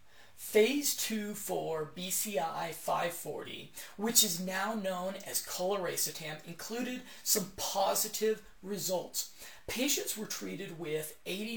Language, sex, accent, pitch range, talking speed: English, male, American, 170-215 Hz, 100 wpm